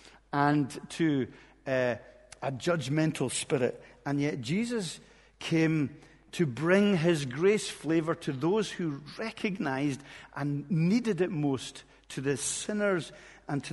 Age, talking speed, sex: 50-69, 120 wpm, male